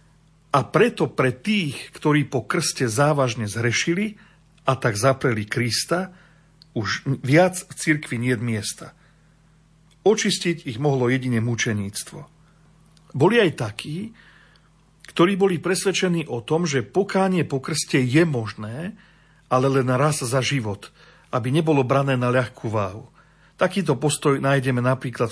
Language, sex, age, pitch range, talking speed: Slovak, male, 50-69, 130-165 Hz, 130 wpm